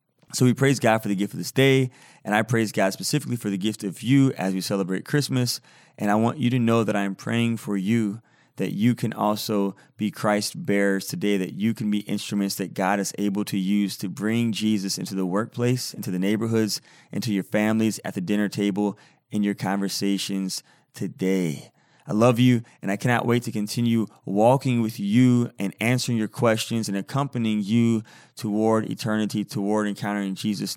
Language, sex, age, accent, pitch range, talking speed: English, male, 20-39, American, 100-115 Hz, 195 wpm